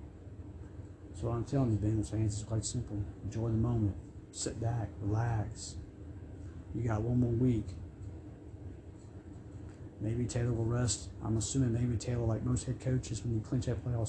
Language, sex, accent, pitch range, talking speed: English, male, American, 100-120 Hz, 165 wpm